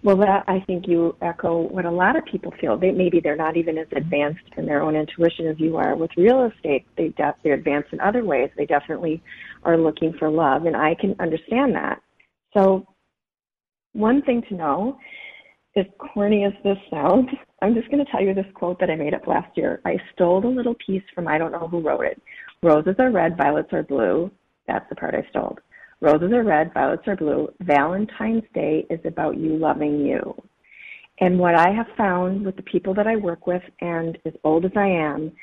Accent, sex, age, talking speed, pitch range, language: American, female, 30-49, 210 wpm, 165-220 Hz, English